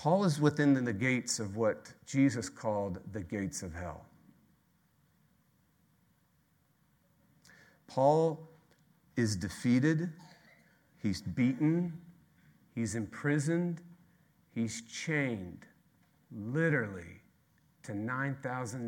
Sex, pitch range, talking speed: male, 105-145 Hz, 80 wpm